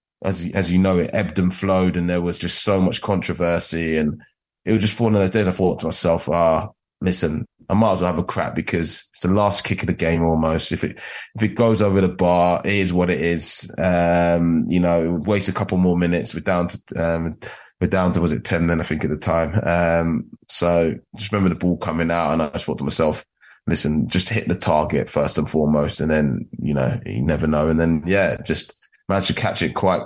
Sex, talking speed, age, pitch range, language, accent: male, 240 wpm, 20-39, 80-95 Hz, English, British